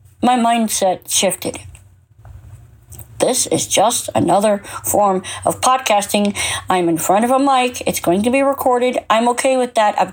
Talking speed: 155 wpm